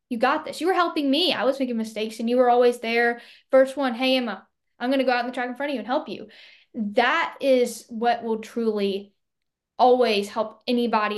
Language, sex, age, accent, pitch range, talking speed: English, female, 10-29, American, 220-255 Hz, 230 wpm